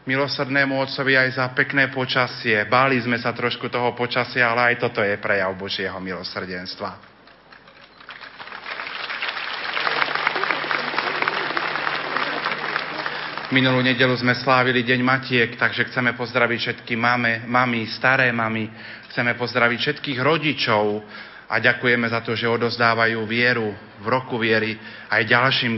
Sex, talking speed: male, 115 wpm